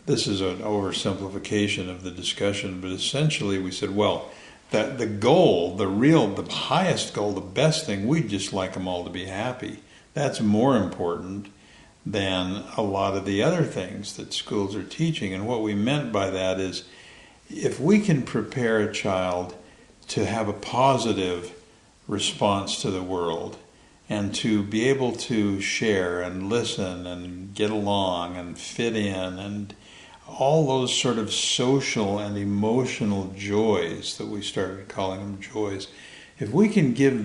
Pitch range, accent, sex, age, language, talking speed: 95-115 Hz, American, male, 60-79, English, 160 wpm